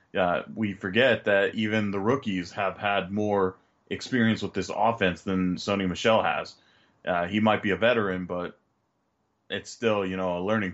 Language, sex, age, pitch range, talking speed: English, male, 20-39, 100-115 Hz, 175 wpm